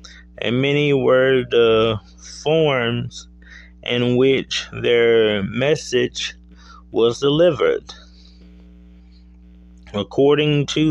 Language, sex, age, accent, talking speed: English, male, 30-49, American, 70 wpm